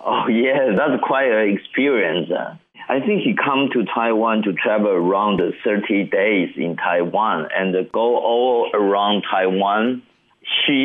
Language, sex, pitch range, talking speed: English, male, 100-135 Hz, 155 wpm